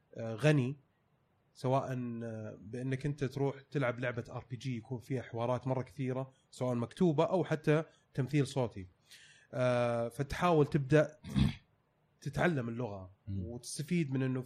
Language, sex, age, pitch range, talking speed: Arabic, male, 30-49, 125-155 Hz, 115 wpm